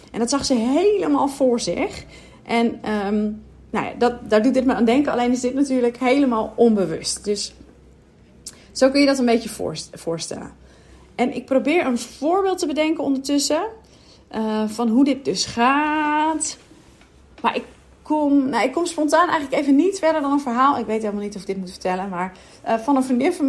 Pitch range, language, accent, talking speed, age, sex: 225-285 Hz, Dutch, Dutch, 175 wpm, 40-59, female